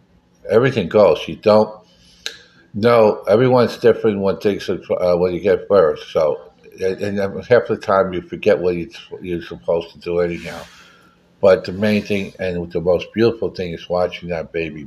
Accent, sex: American, male